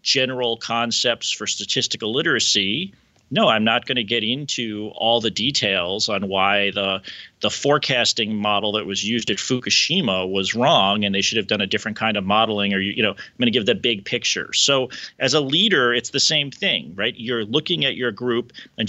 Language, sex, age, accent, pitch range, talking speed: English, male, 40-59, American, 110-130 Hz, 200 wpm